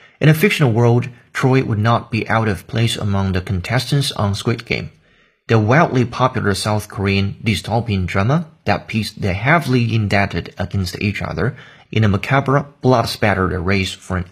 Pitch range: 100-130 Hz